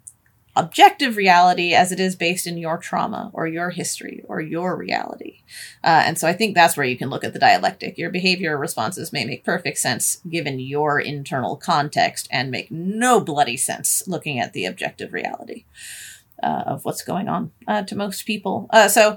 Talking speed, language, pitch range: 190 wpm, English, 170-230 Hz